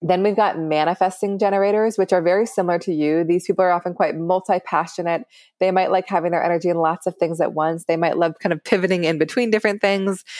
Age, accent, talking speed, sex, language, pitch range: 20-39, American, 225 wpm, female, English, 165-190 Hz